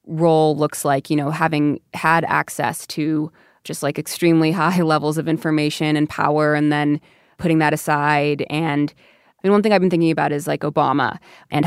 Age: 20-39